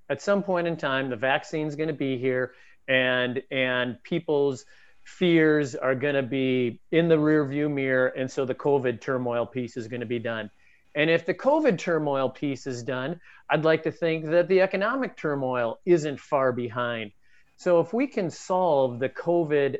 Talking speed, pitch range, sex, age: 180 wpm, 130-165 Hz, male, 40-59